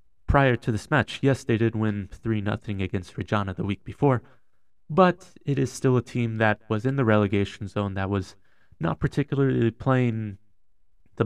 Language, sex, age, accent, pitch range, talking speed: English, male, 30-49, American, 105-130 Hz, 170 wpm